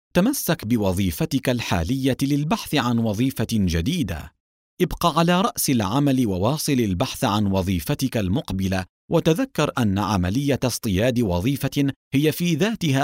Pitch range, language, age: 95-140 Hz, Arabic, 40-59